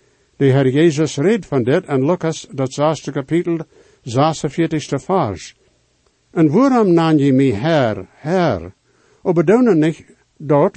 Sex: male